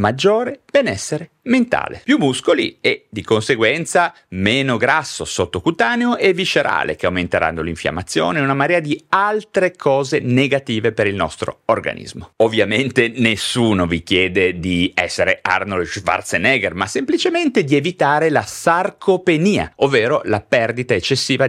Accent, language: native, Italian